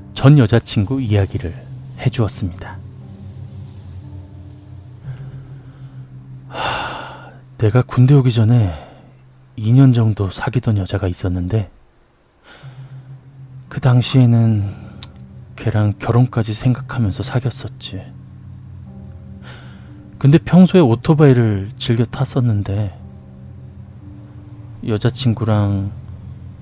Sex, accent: male, native